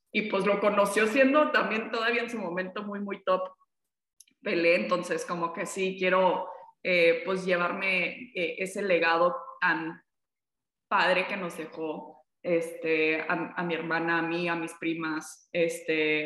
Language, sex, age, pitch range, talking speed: Spanish, female, 20-39, 170-215 Hz, 150 wpm